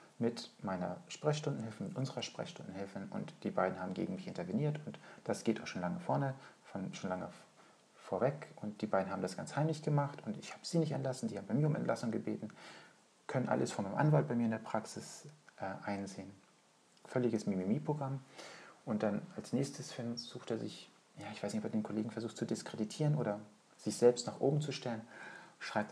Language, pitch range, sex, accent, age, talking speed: German, 100-140 Hz, male, German, 40-59, 195 wpm